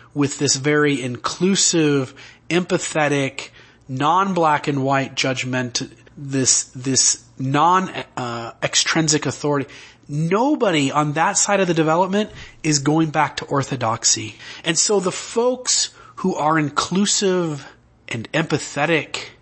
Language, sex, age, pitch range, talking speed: English, male, 30-49, 130-160 Hz, 100 wpm